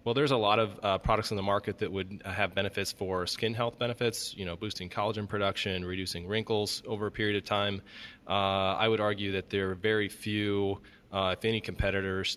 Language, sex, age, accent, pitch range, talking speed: English, male, 30-49, American, 95-105 Hz, 210 wpm